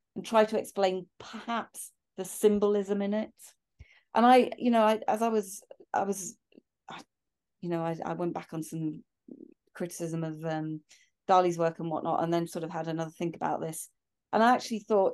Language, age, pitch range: English, 30-49, 165-205 Hz